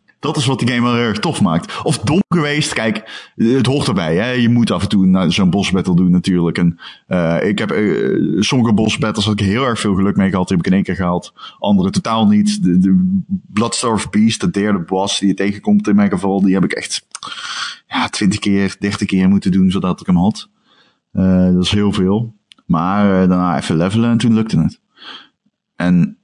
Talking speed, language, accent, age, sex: 220 wpm, Dutch, Dutch, 30-49, male